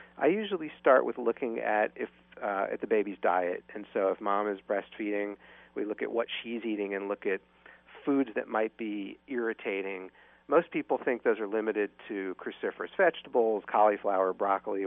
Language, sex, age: English, male, 40-59